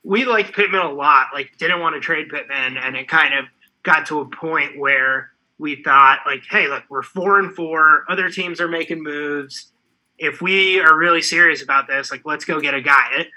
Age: 20-39